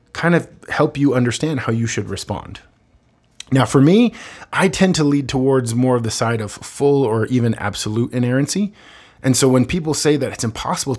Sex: male